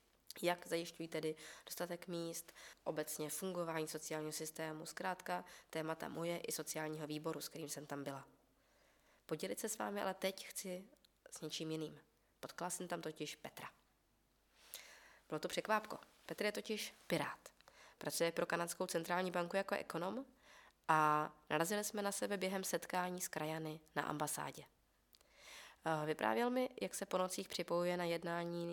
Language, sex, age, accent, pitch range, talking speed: Czech, female, 20-39, native, 155-180 Hz, 145 wpm